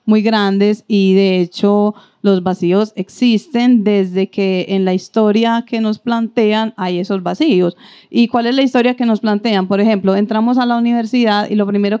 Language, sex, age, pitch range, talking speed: Spanish, female, 30-49, 195-225 Hz, 180 wpm